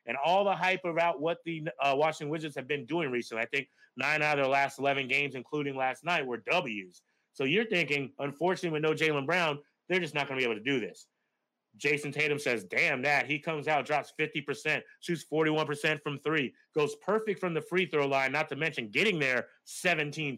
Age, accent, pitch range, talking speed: 30-49, American, 140-175 Hz, 215 wpm